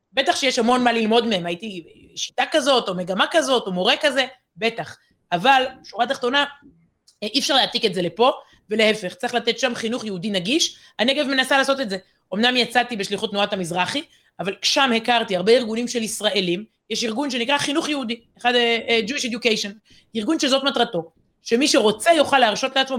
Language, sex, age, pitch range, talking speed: Hebrew, female, 30-49, 200-260 Hz, 170 wpm